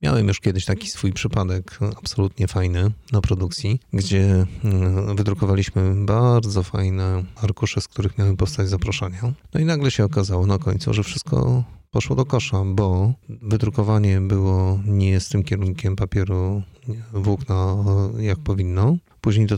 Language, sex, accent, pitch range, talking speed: Polish, male, native, 95-110 Hz, 140 wpm